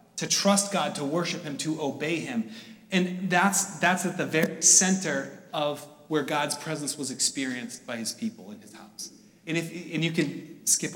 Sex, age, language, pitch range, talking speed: male, 30-49, English, 155-210 Hz, 185 wpm